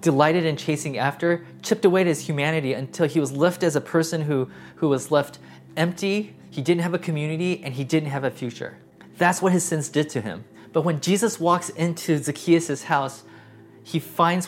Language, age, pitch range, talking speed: English, 20-39, 130-170 Hz, 200 wpm